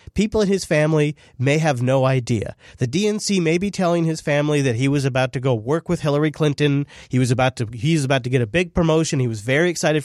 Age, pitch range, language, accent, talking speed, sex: 30-49, 135-170 Hz, English, American, 245 wpm, male